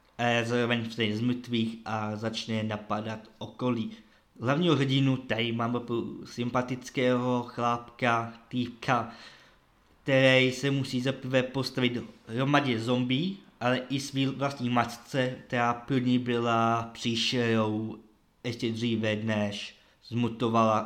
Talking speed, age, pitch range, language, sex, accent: 100 wpm, 20-39, 115-125 Hz, Czech, male, native